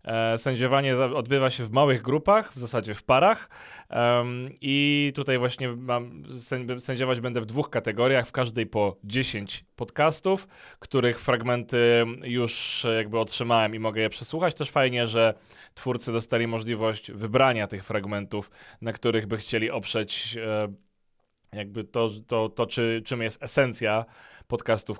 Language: Polish